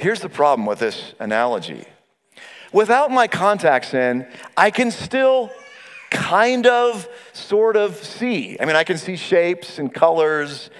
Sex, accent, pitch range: male, American, 160-240 Hz